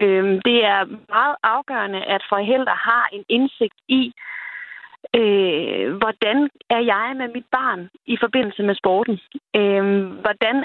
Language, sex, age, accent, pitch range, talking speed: Danish, female, 30-49, native, 205-260 Hz, 120 wpm